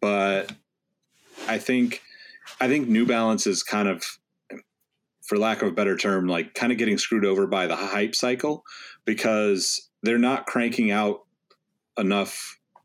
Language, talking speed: English, 150 wpm